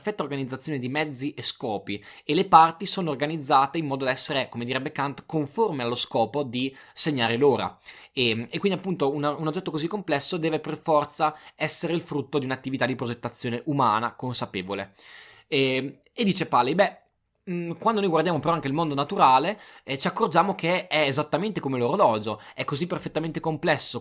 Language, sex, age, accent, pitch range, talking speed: Italian, male, 20-39, native, 125-165 Hz, 170 wpm